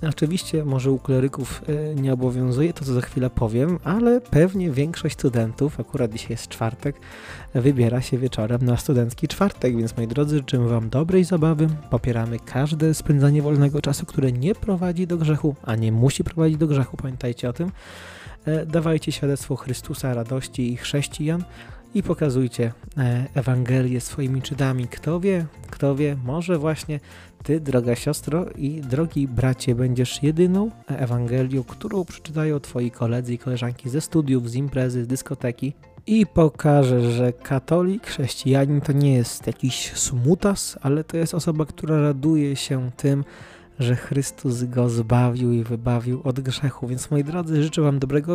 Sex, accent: male, native